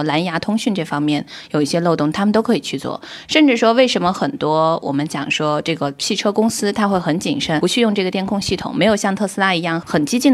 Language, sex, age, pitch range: Chinese, female, 20-39, 150-205 Hz